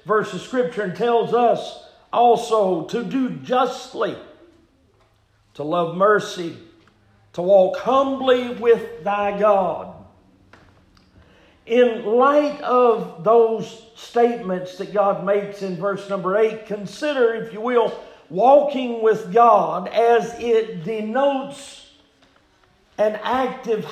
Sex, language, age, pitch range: male, English, 50-69, 205-245 Hz